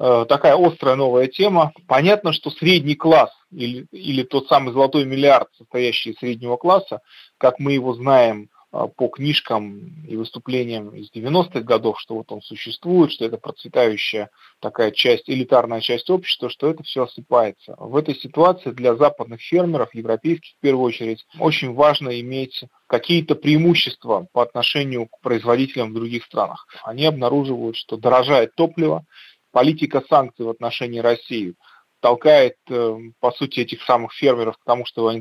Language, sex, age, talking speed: Russian, male, 30-49, 150 wpm